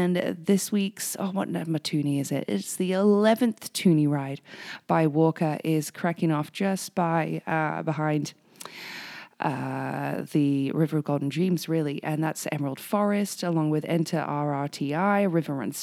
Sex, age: female, 20-39